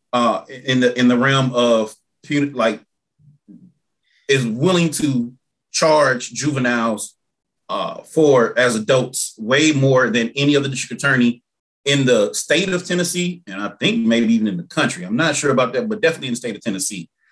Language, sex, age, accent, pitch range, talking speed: English, male, 30-49, American, 115-135 Hz, 170 wpm